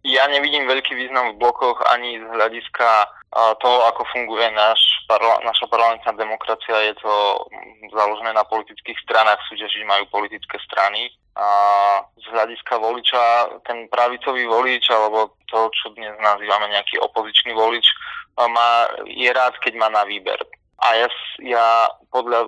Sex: male